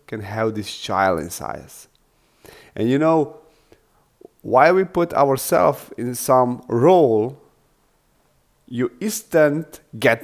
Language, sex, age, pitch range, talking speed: English, male, 30-49, 110-150 Hz, 110 wpm